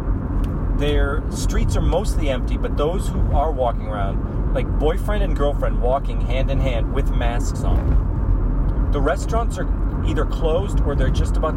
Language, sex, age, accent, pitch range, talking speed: English, male, 40-59, American, 70-95 Hz, 160 wpm